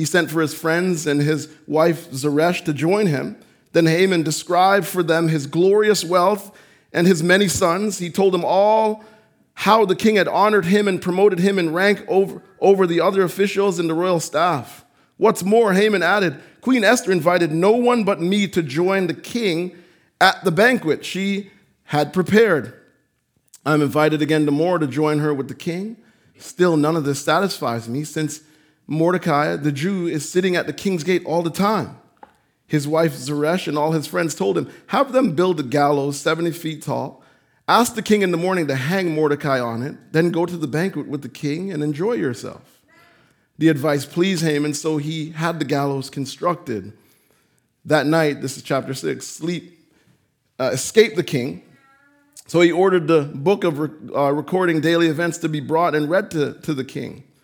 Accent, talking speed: American, 185 wpm